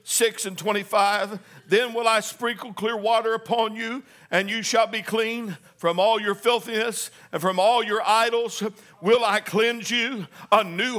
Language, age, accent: English, 60-79, American